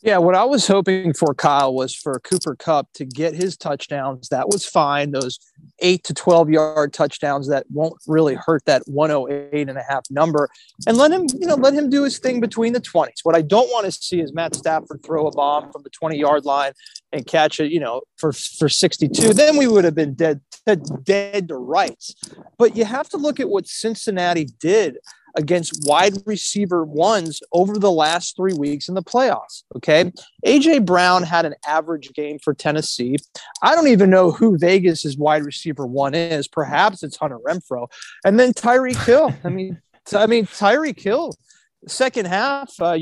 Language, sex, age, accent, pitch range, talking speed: English, male, 30-49, American, 145-210 Hz, 190 wpm